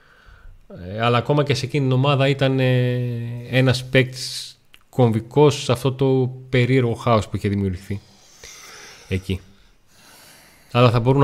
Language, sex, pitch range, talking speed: Greek, male, 105-130 Hz, 135 wpm